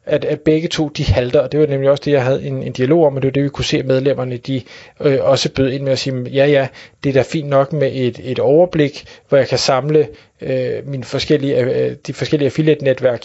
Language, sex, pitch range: Danish, male, 135-160 Hz